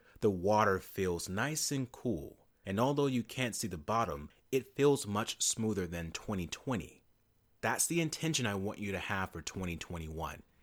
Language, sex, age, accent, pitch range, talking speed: English, male, 30-49, American, 90-120 Hz, 165 wpm